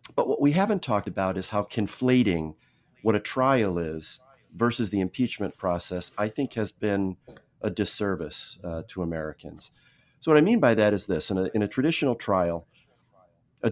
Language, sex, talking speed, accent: English, male, 175 wpm, American